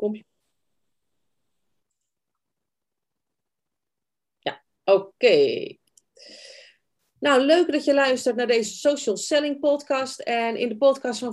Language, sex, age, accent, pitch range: Dutch, female, 40-59, Dutch, 175-245 Hz